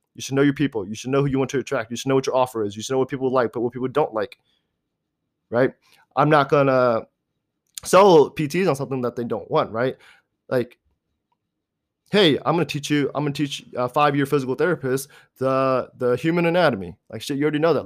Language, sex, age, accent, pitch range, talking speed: English, male, 20-39, American, 120-145 Hz, 235 wpm